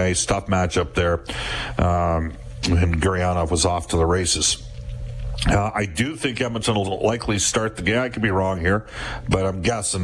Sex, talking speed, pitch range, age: male, 185 wpm, 90-110 Hz, 50-69